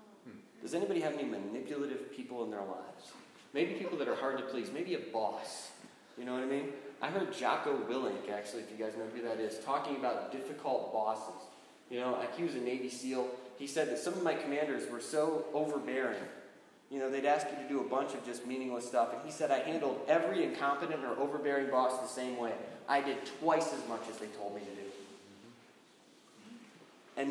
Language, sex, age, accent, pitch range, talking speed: English, male, 20-39, American, 130-200 Hz, 210 wpm